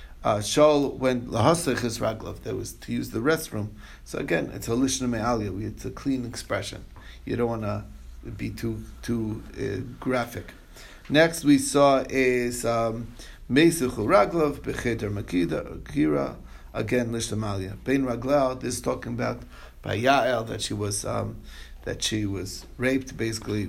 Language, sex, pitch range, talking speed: English, male, 105-130 Hz, 155 wpm